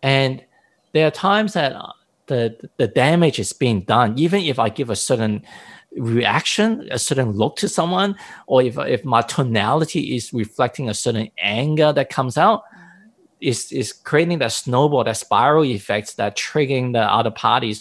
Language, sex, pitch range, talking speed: English, male, 110-160 Hz, 165 wpm